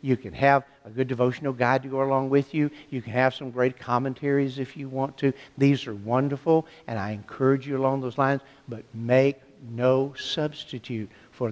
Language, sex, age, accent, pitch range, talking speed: English, male, 60-79, American, 125-155 Hz, 195 wpm